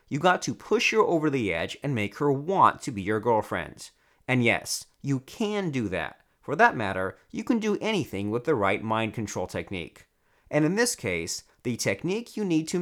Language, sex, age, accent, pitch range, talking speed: English, male, 30-49, American, 105-160 Hz, 205 wpm